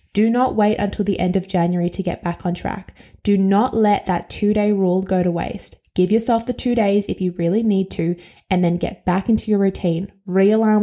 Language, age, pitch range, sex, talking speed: English, 10-29, 185-215 Hz, female, 220 wpm